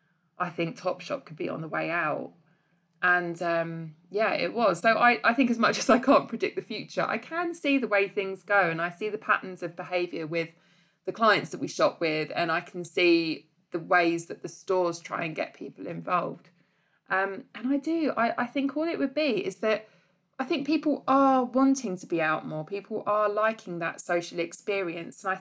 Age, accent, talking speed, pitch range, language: 20-39, British, 215 wpm, 170-225 Hz, English